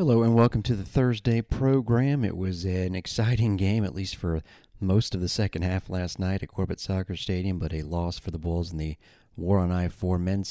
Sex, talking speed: male, 215 wpm